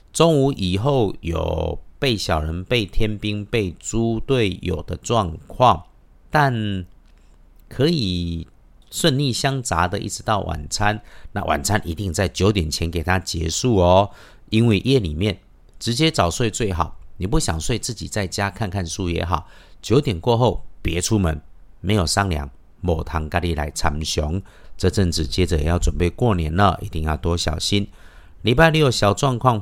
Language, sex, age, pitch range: Chinese, male, 50-69, 80-105 Hz